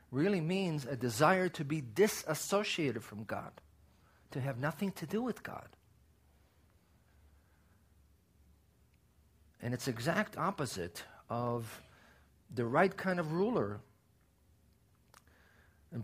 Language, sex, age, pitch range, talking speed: English, male, 50-69, 105-165 Hz, 105 wpm